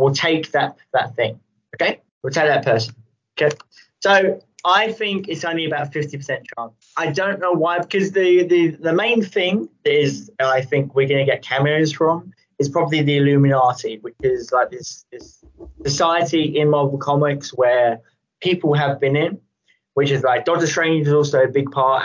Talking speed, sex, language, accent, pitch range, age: 185 wpm, male, English, British, 135-170 Hz, 20-39